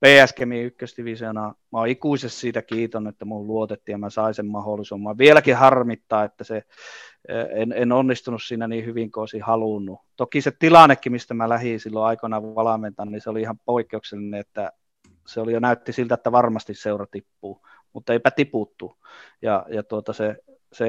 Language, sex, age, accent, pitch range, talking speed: Finnish, male, 30-49, native, 110-130 Hz, 170 wpm